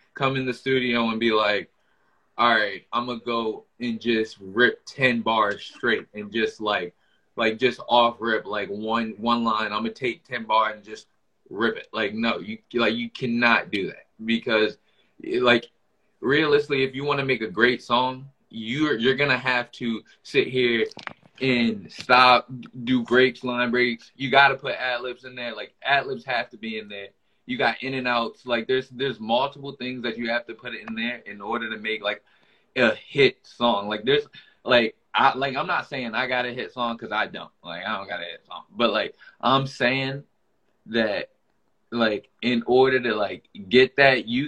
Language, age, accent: English, 20-39, American